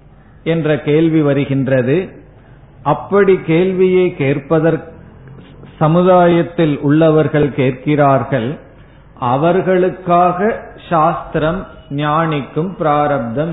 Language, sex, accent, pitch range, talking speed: Tamil, male, native, 130-165 Hz, 60 wpm